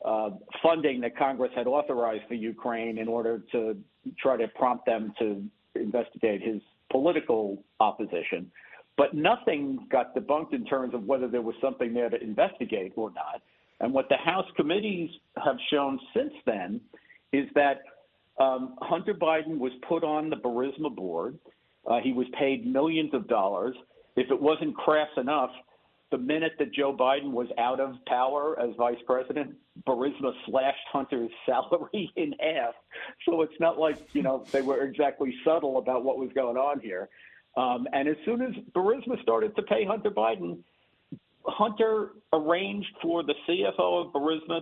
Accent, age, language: American, 50-69, English